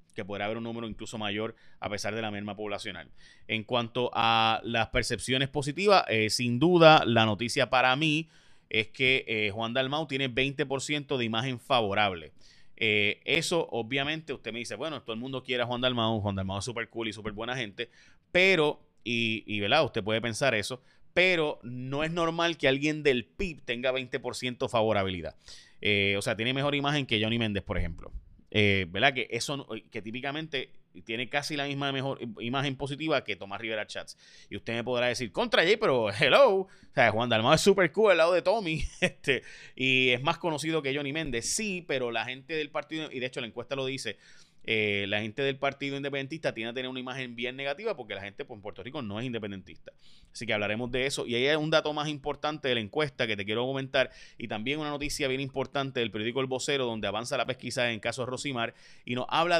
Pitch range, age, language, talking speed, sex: 110-145 Hz, 30-49, Spanish, 210 wpm, male